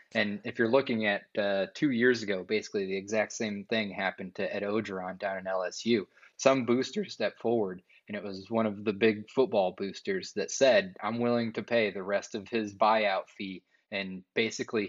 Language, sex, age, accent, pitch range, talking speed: English, male, 20-39, American, 105-120 Hz, 195 wpm